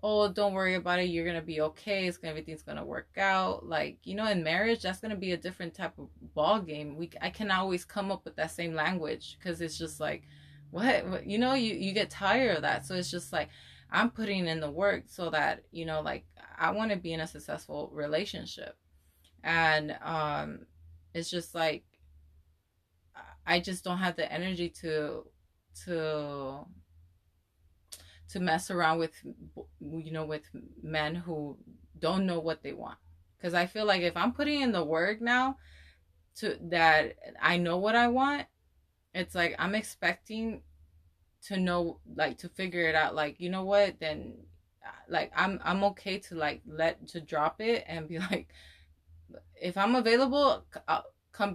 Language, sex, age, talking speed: English, female, 20-39, 175 wpm